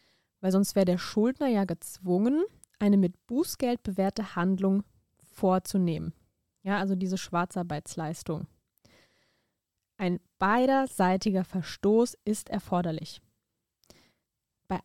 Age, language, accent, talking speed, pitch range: 20-39, German, German, 95 wpm, 180-215 Hz